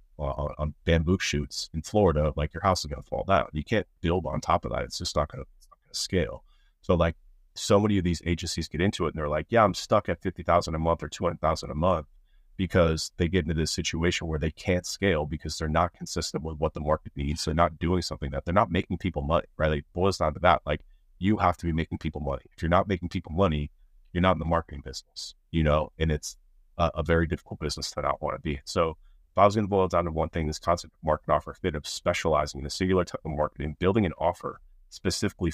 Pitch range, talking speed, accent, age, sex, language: 75-90 Hz, 255 wpm, American, 30-49, male, English